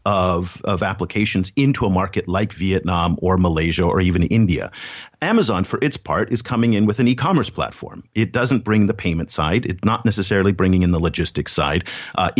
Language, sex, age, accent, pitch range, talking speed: English, male, 50-69, American, 85-115 Hz, 190 wpm